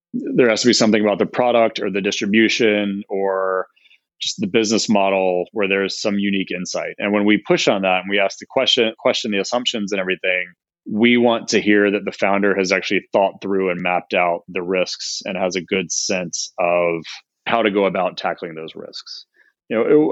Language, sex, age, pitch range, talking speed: English, male, 30-49, 95-110 Hz, 205 wpm